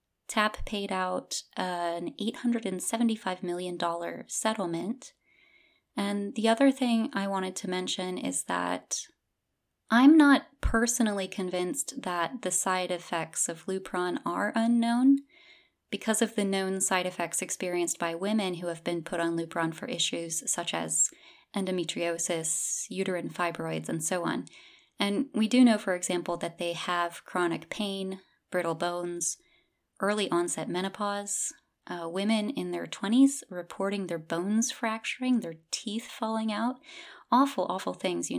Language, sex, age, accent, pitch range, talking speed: English, female, 20-39, American, 180-235 Hz, 135 wpm